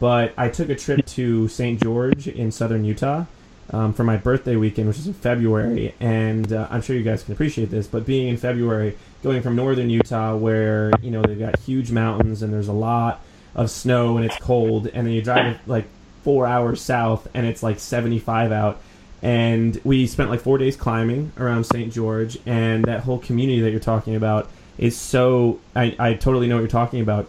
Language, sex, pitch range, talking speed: English, male, 110-125 Hz, 205 wpm